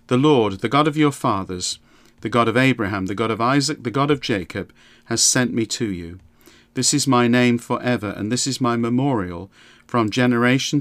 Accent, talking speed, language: British, 200 wpm, English